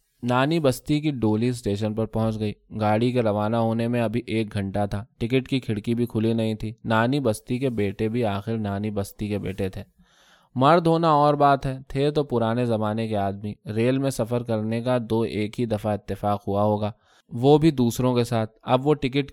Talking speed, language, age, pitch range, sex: 205 wpm, Urdu, 20-39, 110-135 Hz, male